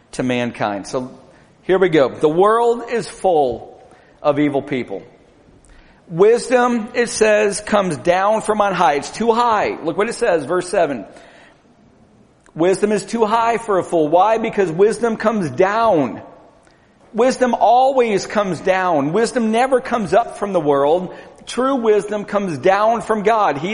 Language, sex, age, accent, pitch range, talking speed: English, male, 50-69, American, 165-230 Hz, 150 wpm